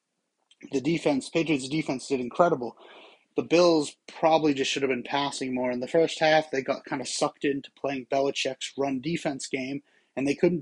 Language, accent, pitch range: English, American, 135-155 Hz